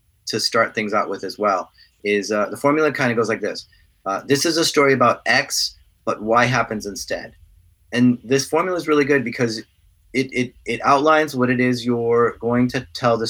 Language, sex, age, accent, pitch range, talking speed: English, male, 30-49, American, 110-135 Hz, 210 wpm